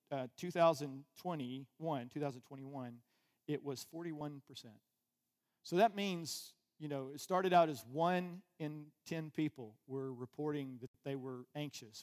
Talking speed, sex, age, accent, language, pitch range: 170 wpm, male, 40-59, American, English, 135-170 Hz